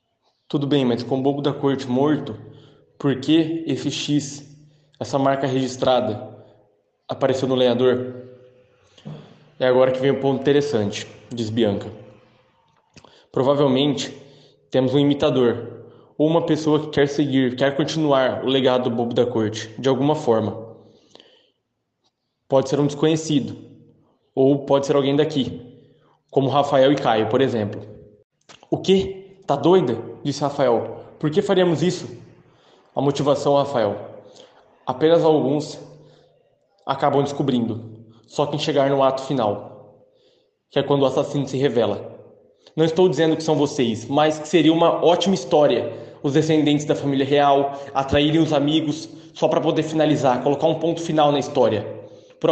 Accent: Brazilian